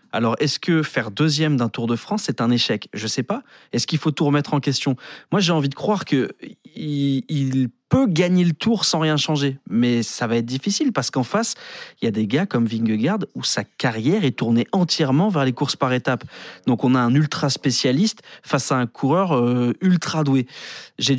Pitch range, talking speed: 120-150 Hz, 220 wpm